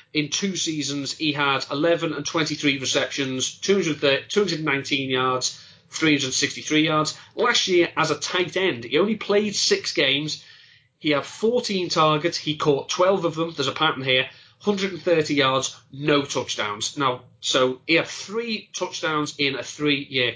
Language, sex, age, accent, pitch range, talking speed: English, male, 30-49, British, 135-180 Hz, 145 wpm